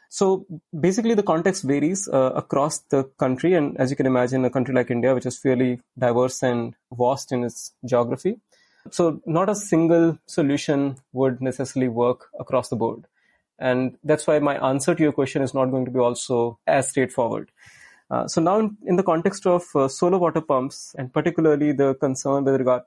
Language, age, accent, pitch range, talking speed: English, 30-49, Indian, 130-165 Hz, 190 wpm